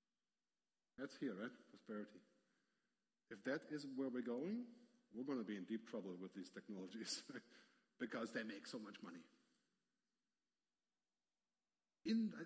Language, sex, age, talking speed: English, male, 50-69, 130 wpm